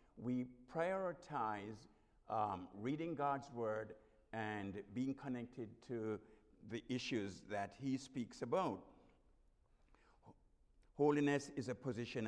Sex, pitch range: male, 100-135 Hz